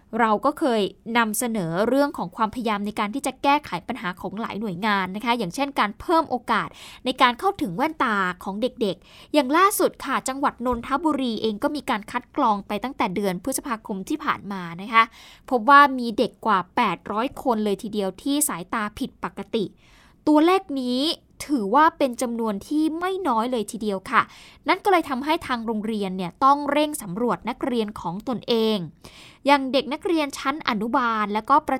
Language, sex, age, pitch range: Thai, female, 10-29, 210-275 Hz